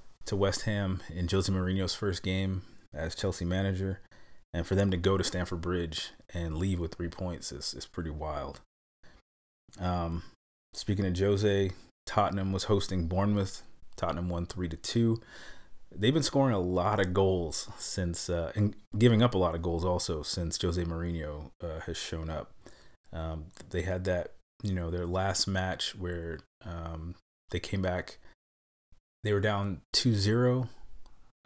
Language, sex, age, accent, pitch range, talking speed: English, male, 30-49, American, 85-100 Hz, 160 wpm